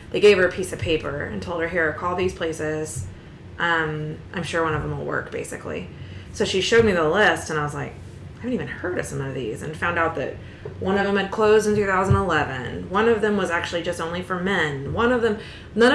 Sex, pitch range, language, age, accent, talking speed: female, 150-180 Hz, English, 20-39, American, 245 wpm